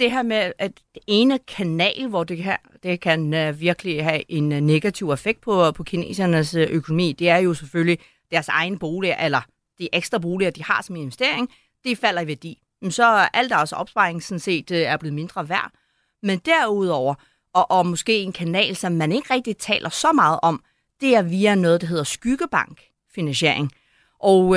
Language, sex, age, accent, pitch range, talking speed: Danish, female, 40-59, native, 160-215 Hz, 180 wpm